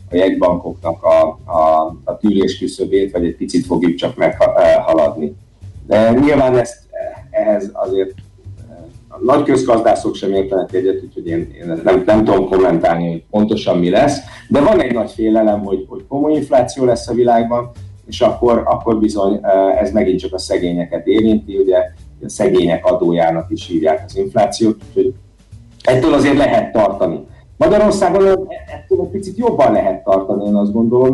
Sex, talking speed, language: male, 160 wpm, Hungarian